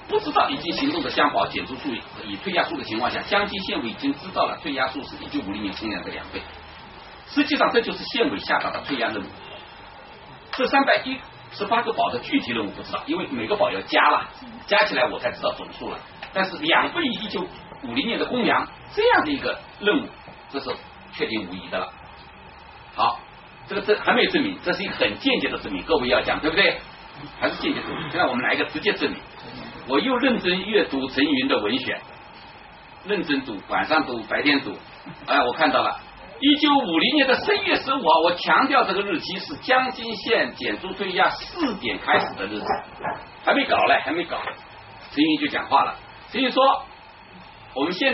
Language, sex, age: Chinese, male, 40-59